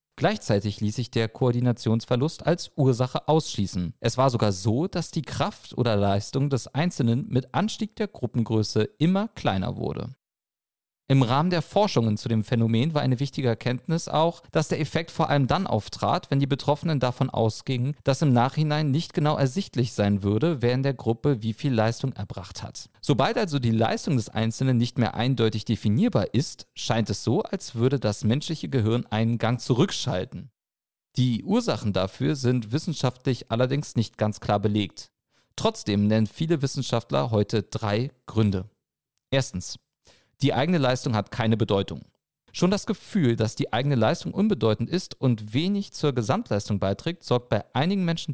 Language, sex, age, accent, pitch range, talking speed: German, male, 40-59, German, 110-150 Hz, 165 wpm